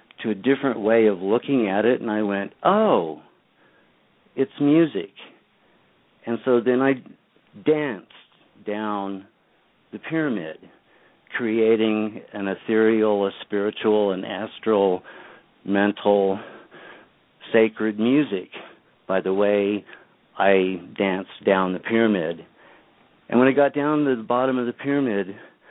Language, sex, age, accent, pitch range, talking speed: English, male, 50-69, American, 100-120 Hz, 120 wpm